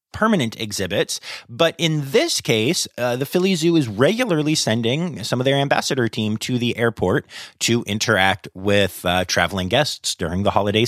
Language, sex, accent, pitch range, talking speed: English, male, American, 100-135 Hz, 165 wpm